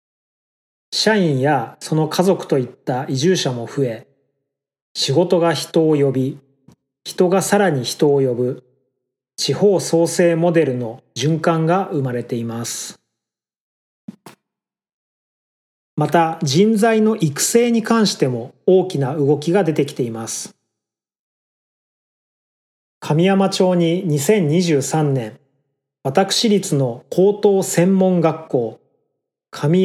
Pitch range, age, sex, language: 140-185 Hz, 30-49, male, Japanese